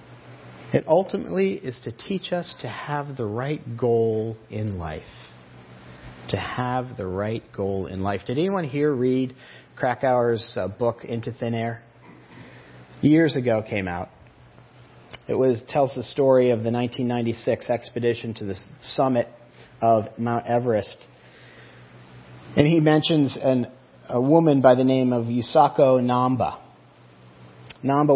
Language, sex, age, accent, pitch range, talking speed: English, male, 40-59, American, 115-135 Hz, 130 wpm